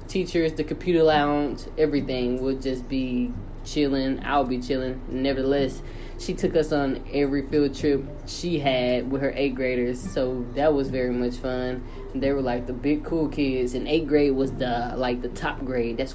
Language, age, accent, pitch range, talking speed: English, 10-29, American, 130-175 Hz, 180 wpm